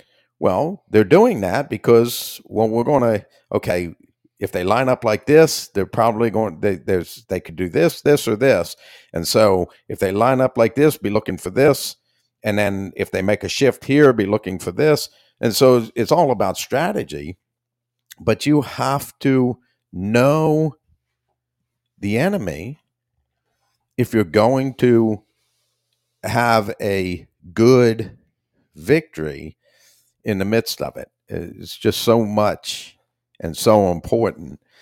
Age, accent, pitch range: 50-69, American, 95-120 Hz